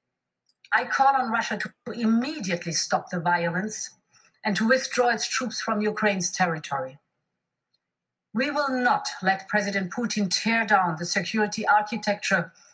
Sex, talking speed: female, 130 wpm